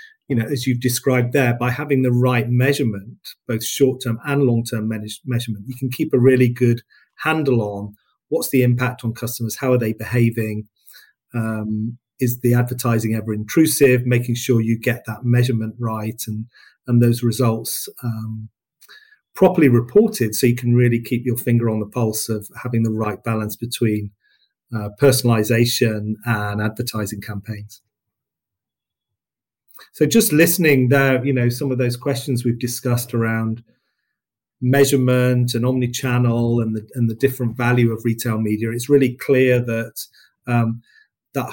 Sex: male